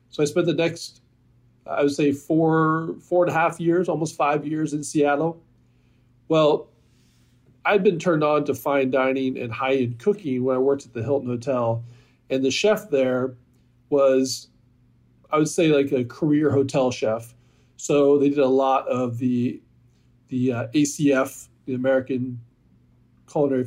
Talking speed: 165 wpm